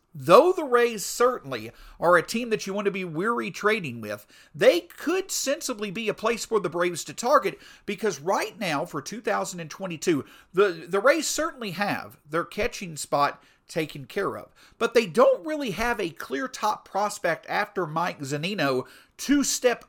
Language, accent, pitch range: English, American, 160-230 Hz